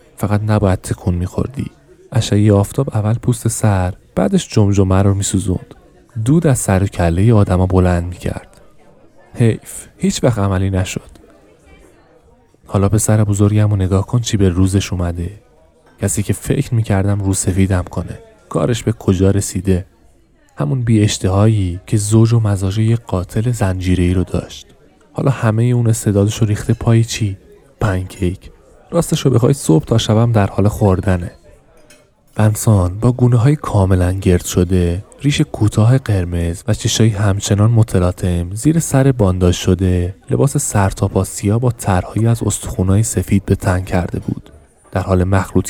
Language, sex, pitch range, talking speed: Persian, male, 95-115 Hz, 145 wpm